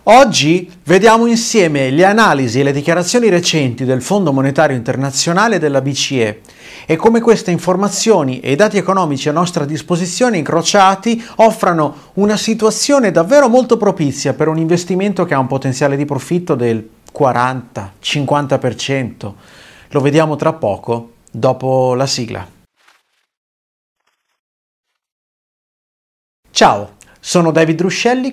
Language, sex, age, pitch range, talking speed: Italian, male, 30-49, 130-190 Hz, 120 wpm